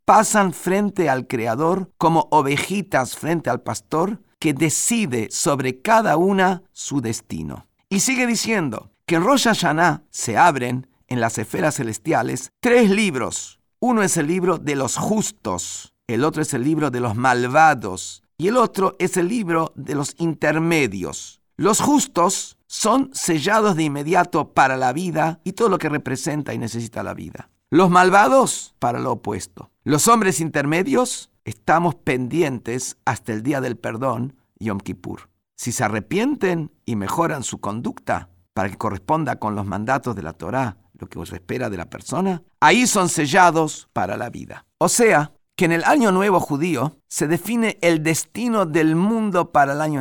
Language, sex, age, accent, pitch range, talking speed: Spanish, male, 50-69, Mexican, 125-185 Hz, 160 wpm